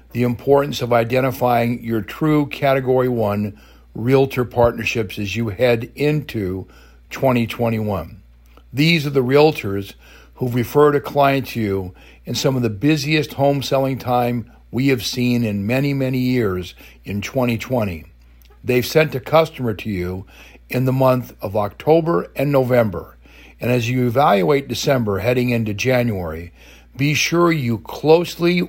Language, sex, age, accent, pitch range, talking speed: English, male, 50-69, American, 105-145 Hz, 140 wpm